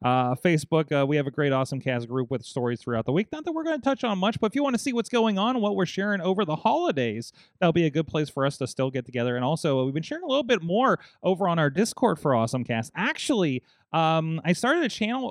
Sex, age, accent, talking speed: male, 30-49, American, 280 wpm